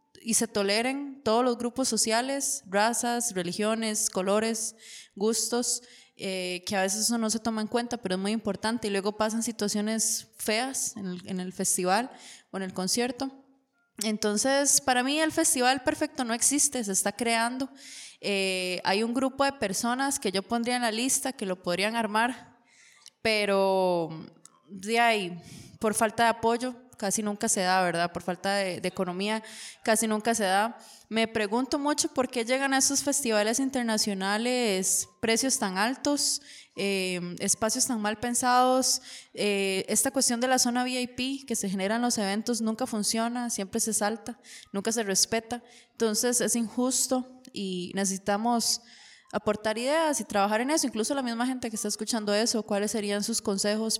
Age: 20-39